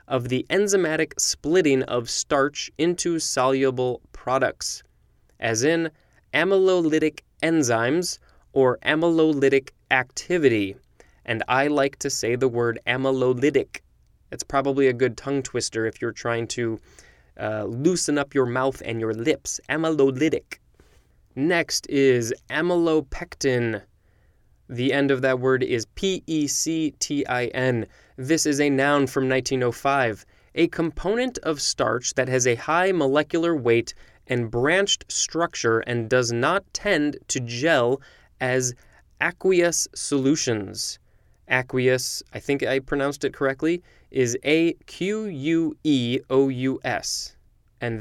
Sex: male